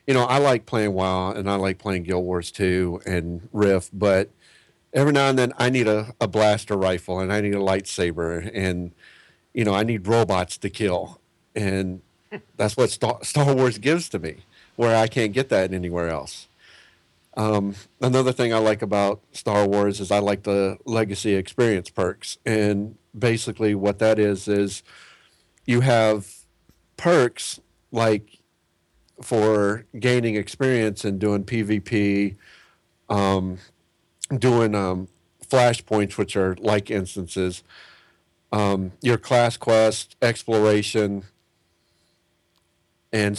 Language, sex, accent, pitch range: English, male, American, 95-120 Hz